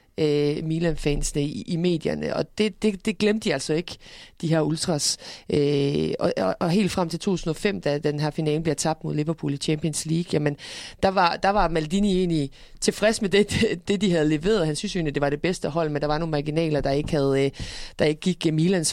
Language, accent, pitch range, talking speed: Danish, native, 150-185 Hz, 220 wpm